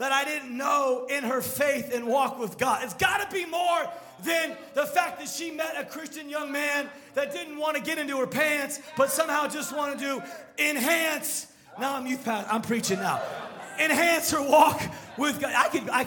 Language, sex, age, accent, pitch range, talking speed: English, male, 30-49, American, 200-305 Hz, 205 wpm